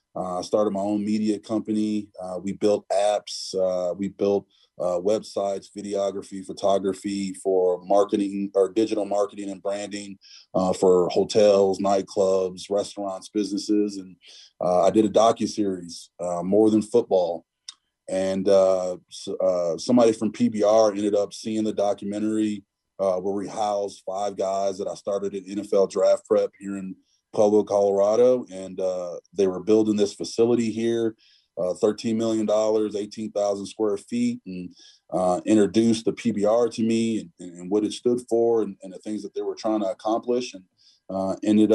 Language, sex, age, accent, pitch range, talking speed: English, male, 30-49, American, 95-110 Hz, 160 wpm